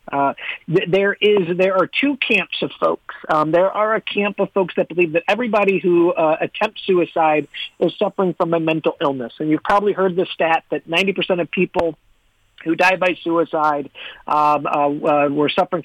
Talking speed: 180 wpm